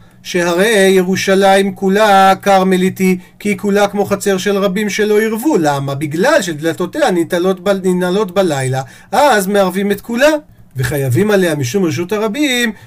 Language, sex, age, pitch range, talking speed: Hebrew, male, 40-59, 160-205 Hz, 135 wpm